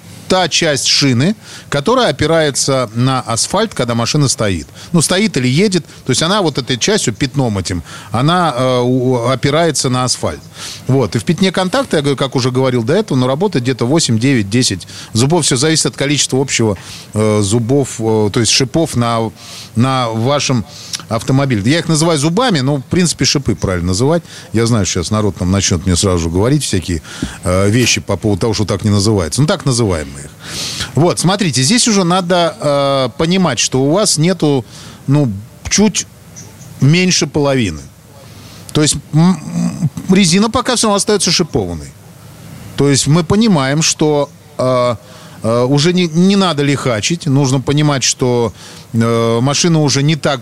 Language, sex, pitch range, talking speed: Russian, male, 115-155 Hz, 160 wpm